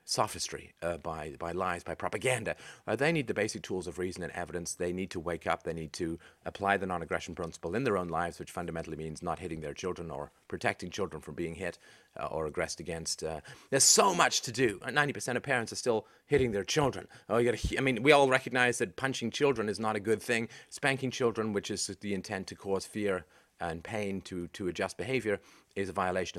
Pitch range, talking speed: 85-120 Hz, 225 wpm